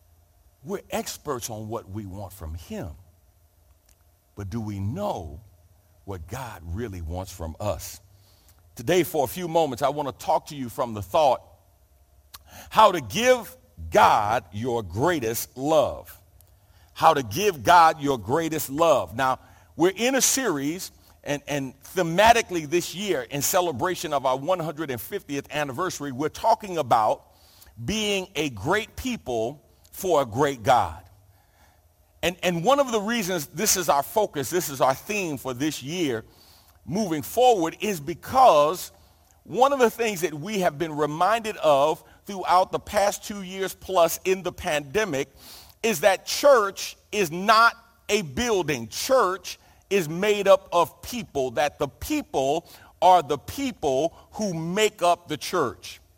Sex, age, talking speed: male, 50-69, 145 wpm